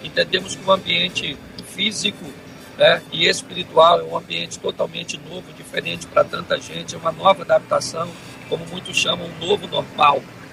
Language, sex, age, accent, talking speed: Portuguese, male, 50-69, Brazilian, 155 wpm